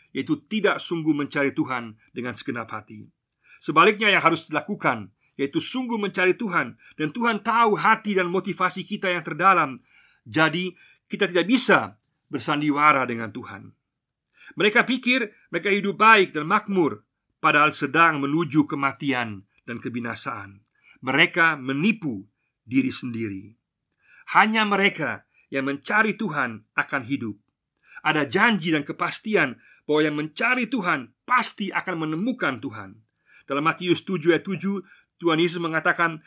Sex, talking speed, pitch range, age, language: male, 125 wpm, 135-190 Hz, 50-69, Indonesian